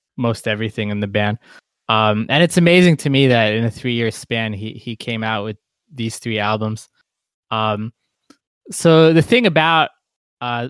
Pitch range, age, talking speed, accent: 115-150 Hz, 20-39, 170 wpm, American